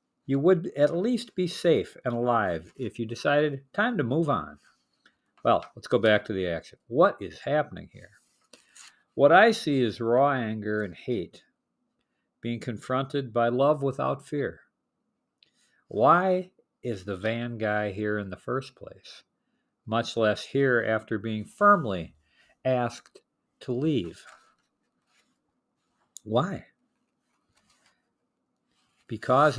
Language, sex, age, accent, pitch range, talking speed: English, male, 50-69, American, 115-155 Hz, 125 wpm